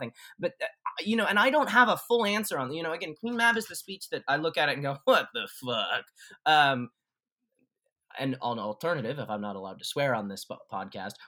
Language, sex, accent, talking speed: English, male, American, 230 wpm